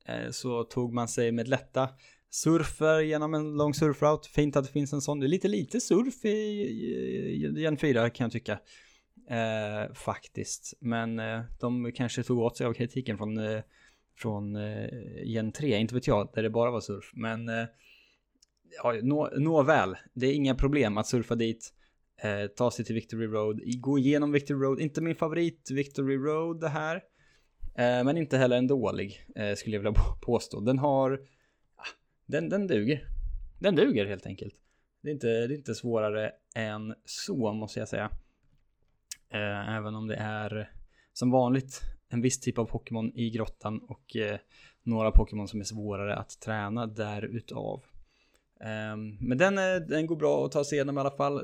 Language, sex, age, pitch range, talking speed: Swedish, male, 20-39, 110-140 Hz, 170 wpm